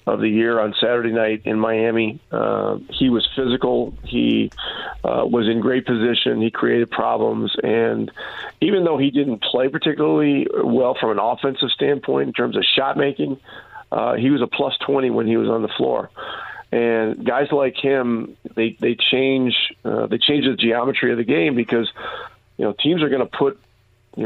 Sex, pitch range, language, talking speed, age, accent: male, 115-135 Hz, English, 185 wpm, 40-59, American